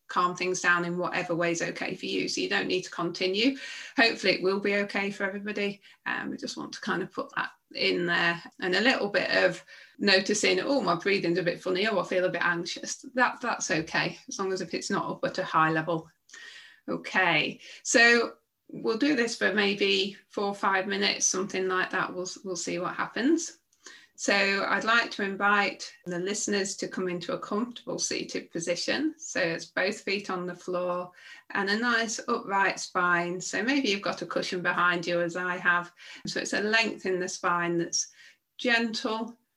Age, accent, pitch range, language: 30-49, British, 175-210 Hz, English